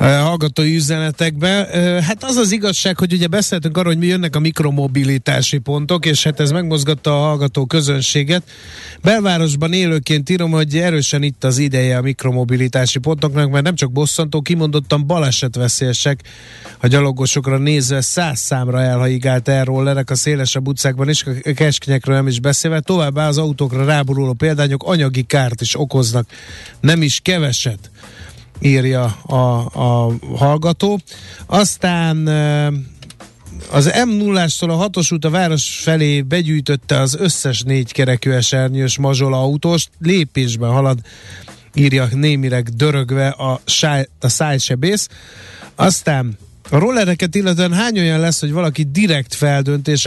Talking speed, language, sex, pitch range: 130 wpm, Hungarian, male, 130-160 Hz